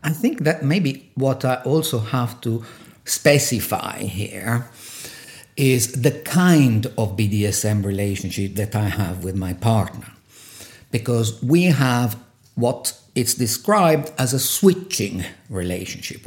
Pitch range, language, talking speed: 120-155 Hz, English, 120 wpm